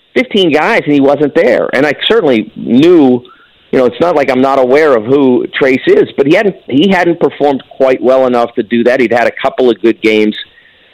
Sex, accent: male, American